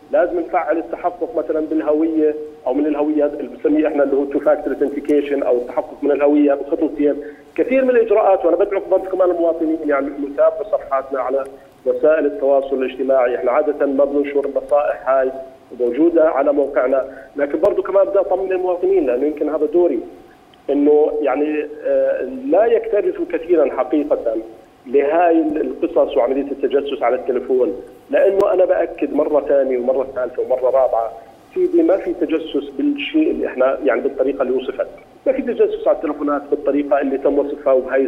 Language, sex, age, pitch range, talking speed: Arabic, male, 40-59, 145-200 Hz, 150 wpm